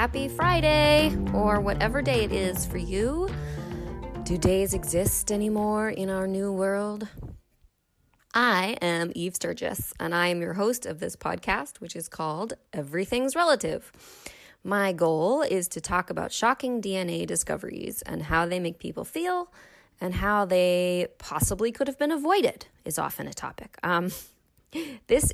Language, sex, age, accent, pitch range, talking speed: English, female, 20-39, American, 170-230 Hz, 150 wpm